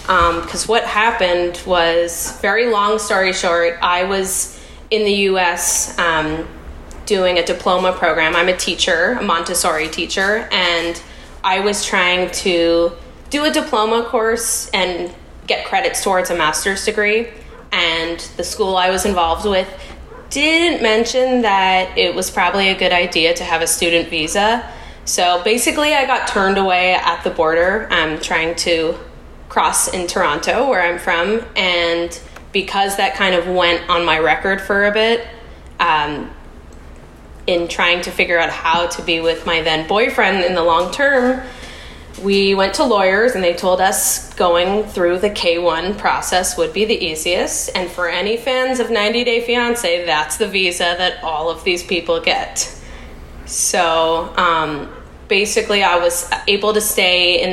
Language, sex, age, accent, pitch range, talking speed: English, female, 10-29, American, 170-210 Hz, 160 wpm